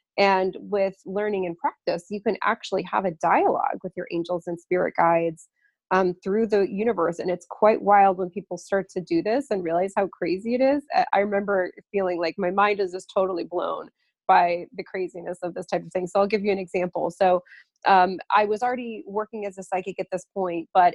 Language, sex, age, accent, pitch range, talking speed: English, female, 20-39, American, 180-210 Hz, 210 wpm